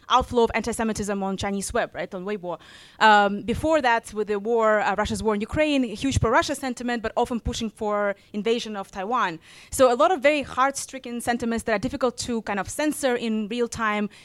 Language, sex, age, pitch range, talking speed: English, female, 20-39, 205-245 Hz, 200 wpm